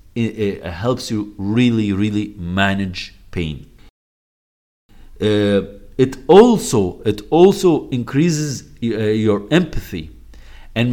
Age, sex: 50-69, male